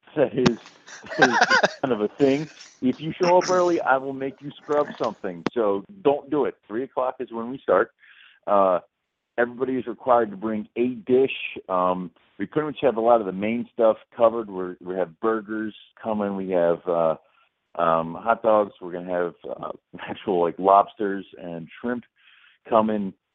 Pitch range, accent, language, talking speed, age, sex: 90-120 Hz, American, English, 175 wpm, 50-69, male